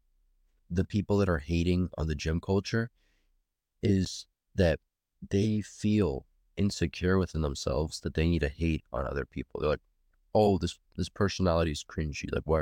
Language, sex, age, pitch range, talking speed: English, male, 30-49, 75-90 Hz, 160 wpm